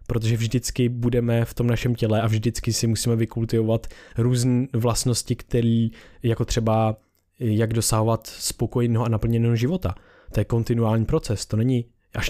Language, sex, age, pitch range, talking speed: Czech, male, 20-39, 105-120 Hz, 145 wpm